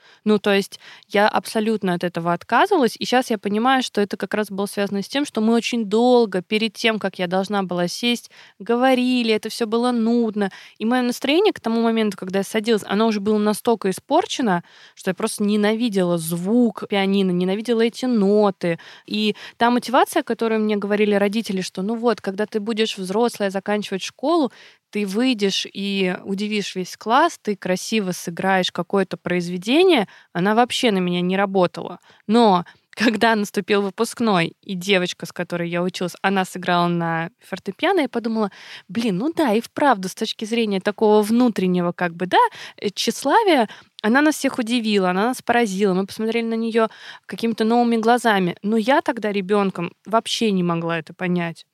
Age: 20-39